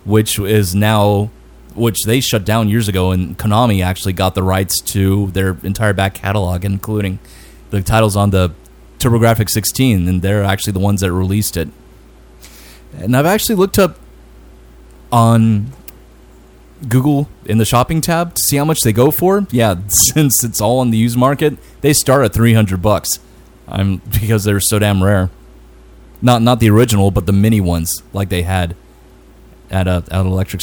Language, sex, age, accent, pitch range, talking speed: English, male, 30-49, American, 95-130 Hz, 170 wpm